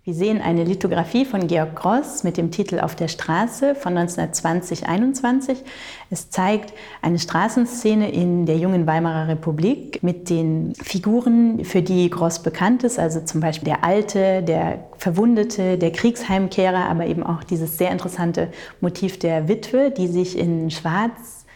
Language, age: German, 30-49